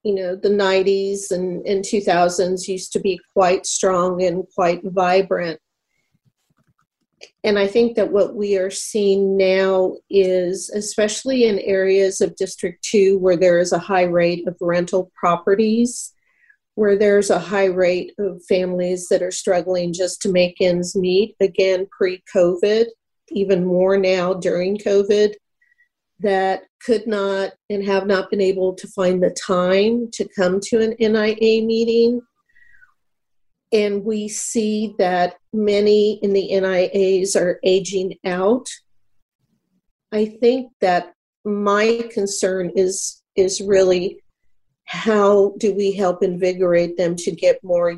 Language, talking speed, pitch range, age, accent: English, 135 wpm, 185-210 Hz, 40-59, American